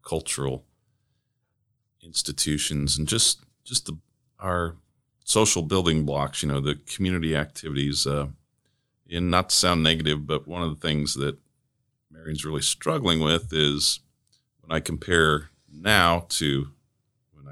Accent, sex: American, male